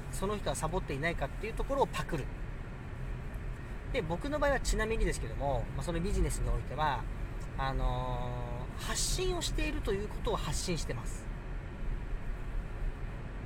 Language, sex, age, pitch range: Japanese, male, 40-59, 125-170 Hz